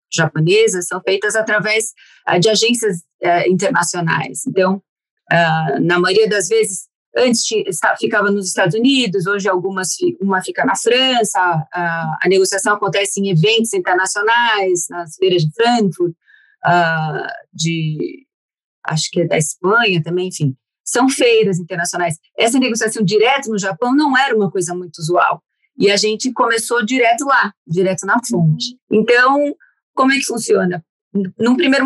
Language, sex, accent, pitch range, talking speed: Portuguese, female, Brazilian, 180-240 Hz, 145 wpm